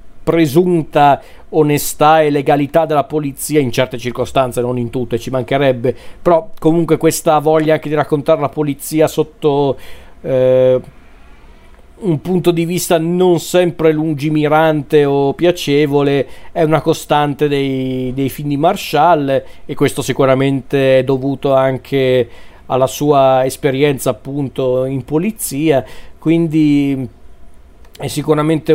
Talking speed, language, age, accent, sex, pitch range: 120 wpm, Italian, 40-59, native, male, 135-155 Hz